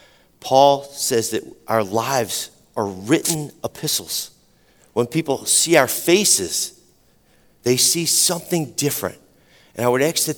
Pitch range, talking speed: 115-160 Hz, 125 wpm